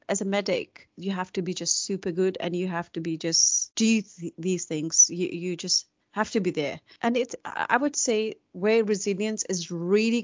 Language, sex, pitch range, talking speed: English, female, 180-235 Hz, 205 wpm